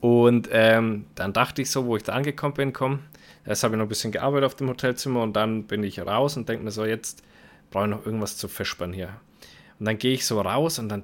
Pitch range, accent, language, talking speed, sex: 110-145 Hz, German, German, 255 wpm, male